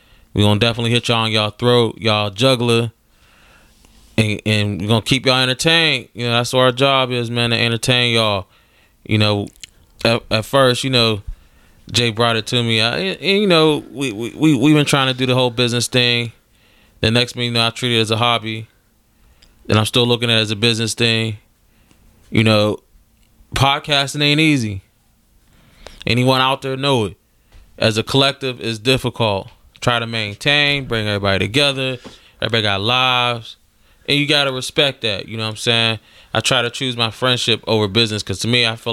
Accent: American